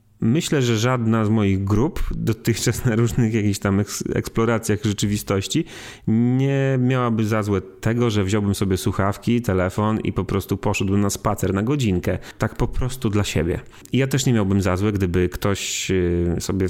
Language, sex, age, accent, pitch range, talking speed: Polish, male, 30-49, native, 95-120 Hz, 165 wpm